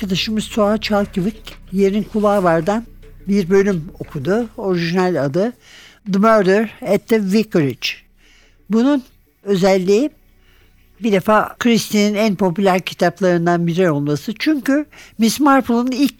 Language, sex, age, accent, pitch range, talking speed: Turkish, male, 60-79, native, 175-235 Hz, 110 wpm